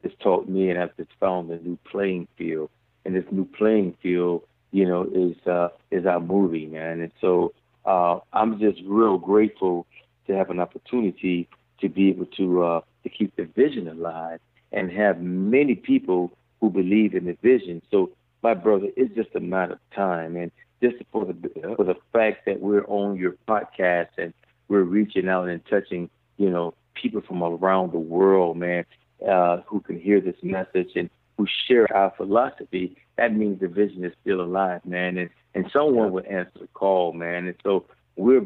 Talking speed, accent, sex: 185 wpm, American, male